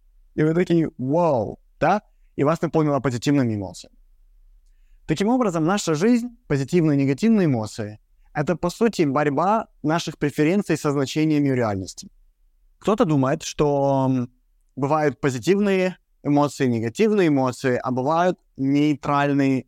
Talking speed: 115 wpm